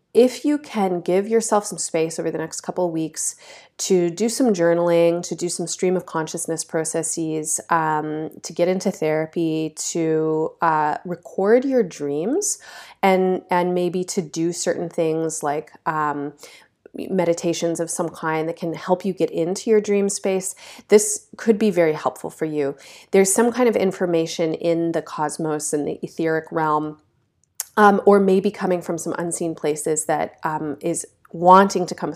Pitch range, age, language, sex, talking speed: 155-185 Hz, 30-49, English, female, 165 wpm